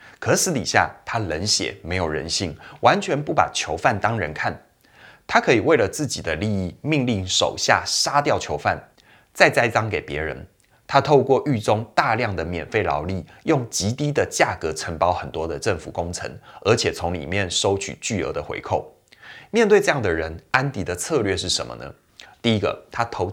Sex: male